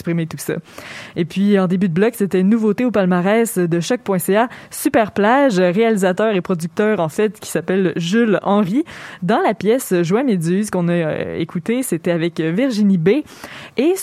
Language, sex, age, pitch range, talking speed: French, female, 20-39, 185-245 Hz, 165 wpm